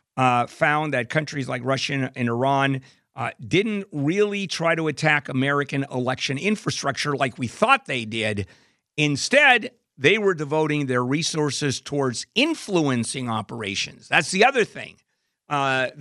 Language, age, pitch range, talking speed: English, 50-69, 130-180 Hz, 135 wpm